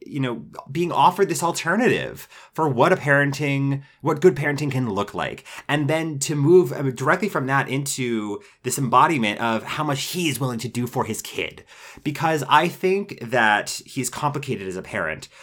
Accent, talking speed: American, 180 wpm